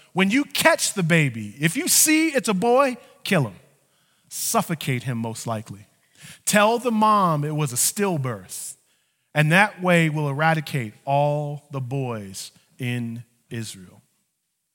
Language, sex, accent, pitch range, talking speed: English, male, American, 135-195 Hz, 140 wpm